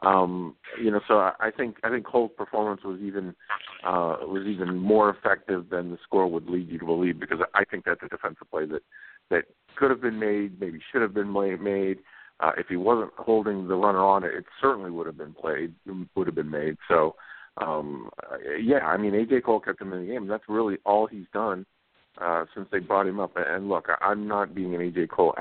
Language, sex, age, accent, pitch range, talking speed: English, male, 50-69, American, 85-105 Hz, 220 wpm